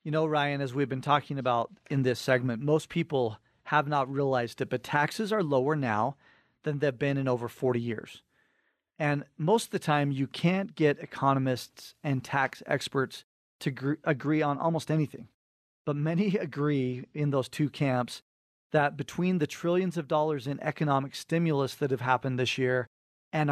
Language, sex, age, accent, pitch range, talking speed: English, male, 40-59, American, 130-155 Hz, 175 wpm